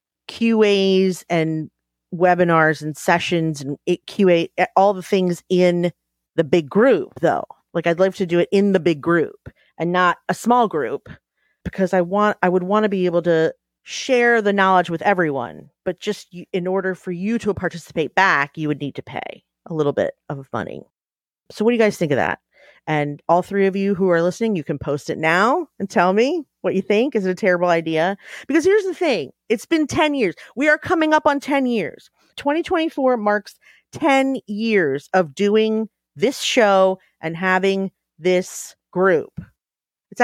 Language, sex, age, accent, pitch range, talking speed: English, female, 40-59, American, 160-215 Hz, 185 wpm